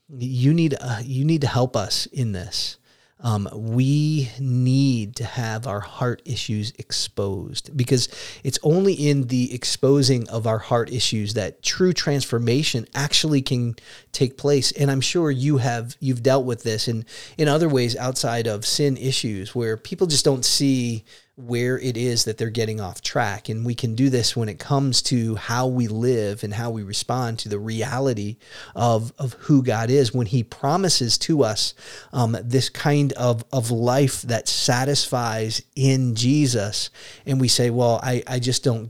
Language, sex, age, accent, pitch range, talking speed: English, male, 30-49, American, 115-135 Hz, 175 wpm